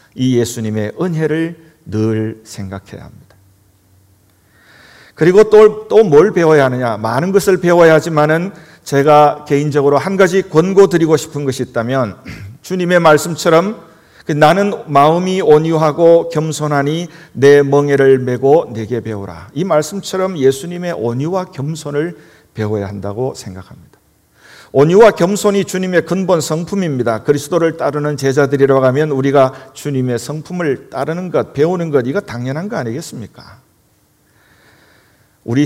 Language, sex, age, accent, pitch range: Korean, male, 40-59, native, 120-170 Hz